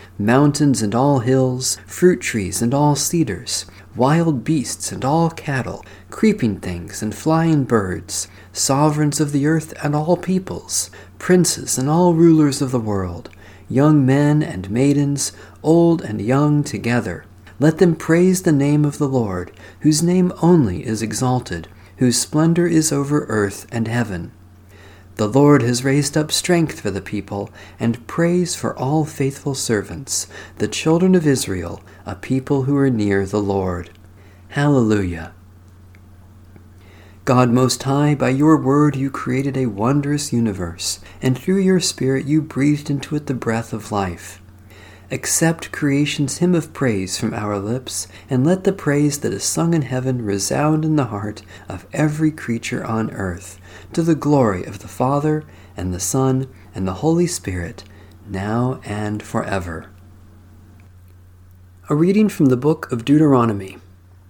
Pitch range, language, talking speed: 95-150 Hz, English, 150 wpm